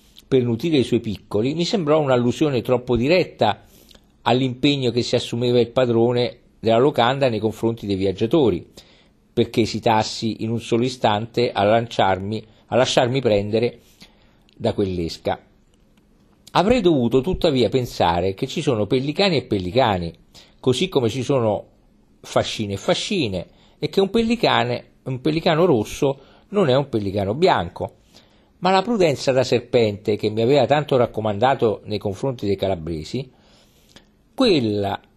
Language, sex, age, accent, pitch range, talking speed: Italian, male, 50-69, native, 110-140 Hz, 135 wpm